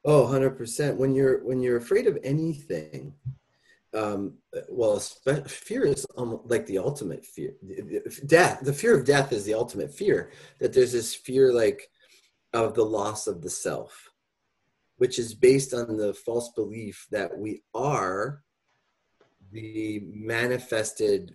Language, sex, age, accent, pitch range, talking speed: English, male, 30-49, American, 120-185 Hz, 140 wpm